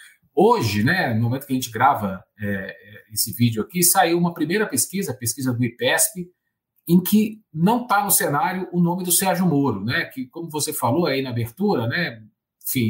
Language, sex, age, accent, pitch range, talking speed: Portuguese, male, 50-69, Brazilian, 125-195 Hz, 185 wpm